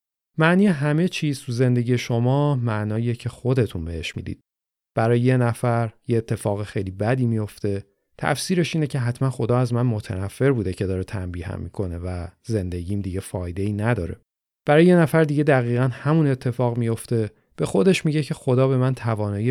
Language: Persian